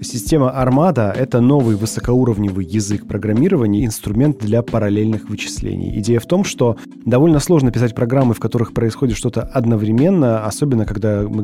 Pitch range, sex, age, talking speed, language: 105-130 Hz, male, 20-39, 140 wpm, Russian